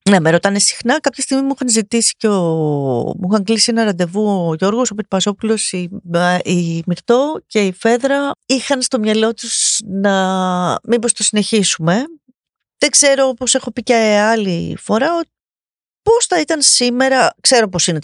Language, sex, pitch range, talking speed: Greek, female, 180-265 Hz, 165 wpm